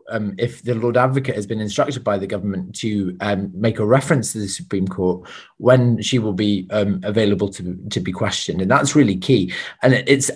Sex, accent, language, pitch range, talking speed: male, British, English, 105-130 Hz, 210 wpm